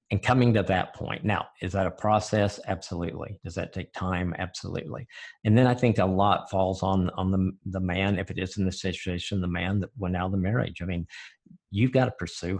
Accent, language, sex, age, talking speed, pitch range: American, English, male, 50-69, 230 wpm, 90-100 Hz